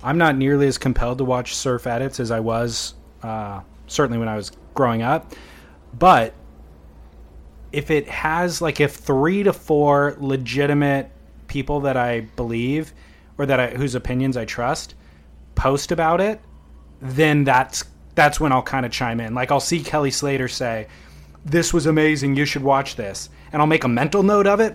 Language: English